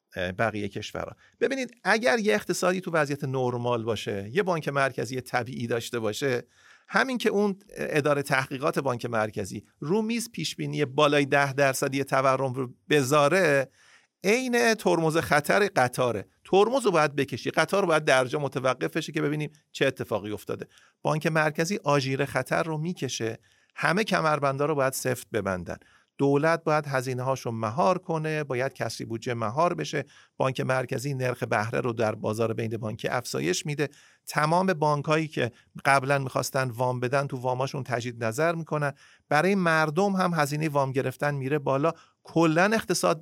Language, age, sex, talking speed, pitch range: Persian, 40-59, male, 145 wpm, 125-165 Hz